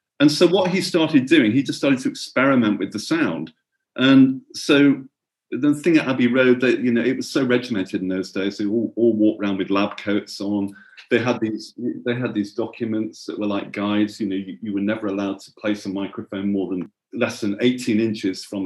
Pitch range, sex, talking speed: 105-170 Hz, male, 210 wpm